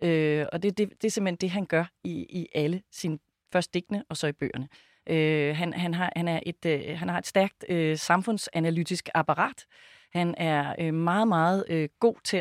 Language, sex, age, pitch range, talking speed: Danish, female, 30-49, 150-180 Hz, 205 wpm